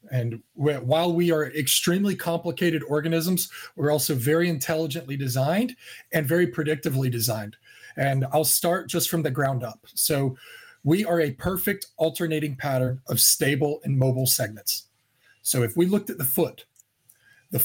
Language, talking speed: English, 150 wpm